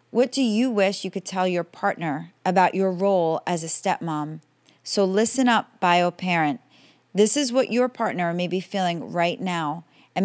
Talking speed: 180 wpm